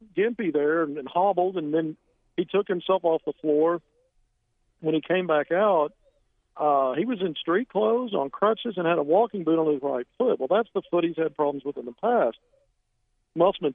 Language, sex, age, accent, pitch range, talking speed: English, male, 50-69, American, 145-180 Hz, 200 wpm